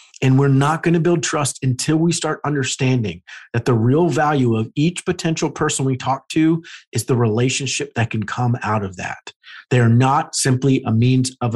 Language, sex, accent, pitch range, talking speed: English, male, American, 125-155 Hz, 190 wpm